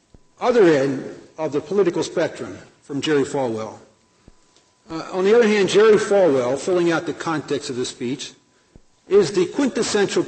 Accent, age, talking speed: American, 60-79, 150 wpm